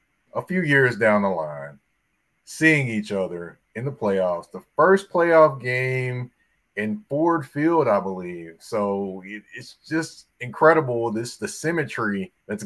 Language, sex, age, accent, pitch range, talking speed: English, male, 30-49, American, 105-155 Hz, 140 wpm